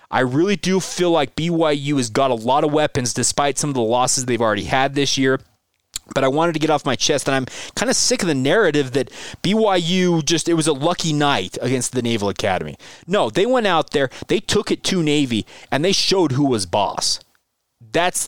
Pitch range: 125-160 Hz